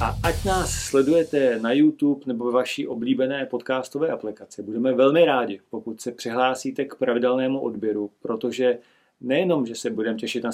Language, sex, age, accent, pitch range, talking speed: Czech, male, 40-59, native, 115-130 Hz, 155 wpm